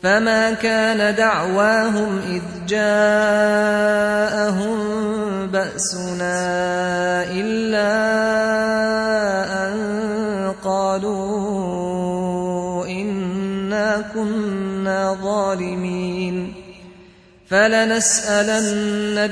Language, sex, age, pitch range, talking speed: Arabic, male, 30-49, 180-210 Hz, 40 wpm